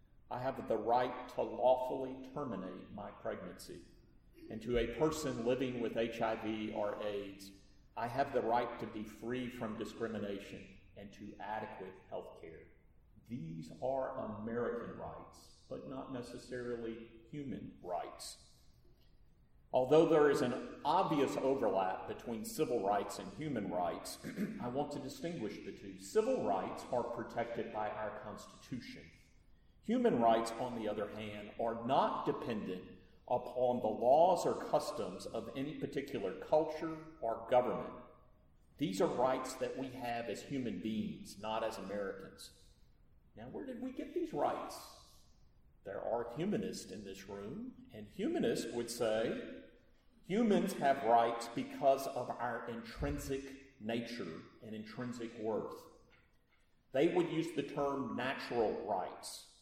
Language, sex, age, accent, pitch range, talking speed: English, male, 50-69, American, 110-135 Hz, 135 wpm